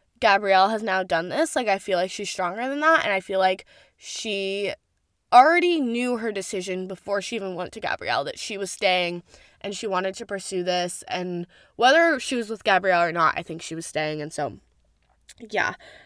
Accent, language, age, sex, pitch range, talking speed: American, English, 10-29, female, 190-255 Hz, 200 wpm